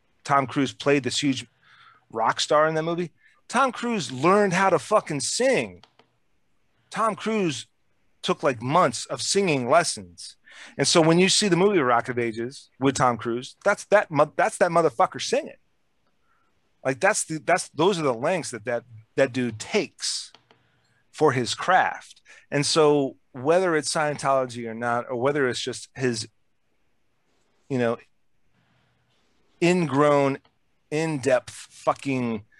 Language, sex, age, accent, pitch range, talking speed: English, male, 30-49, American, 120-165 Hz, 140 wpm